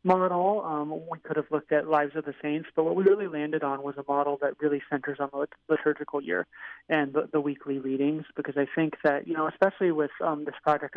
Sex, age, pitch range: male, 30-49, 140-155 Hz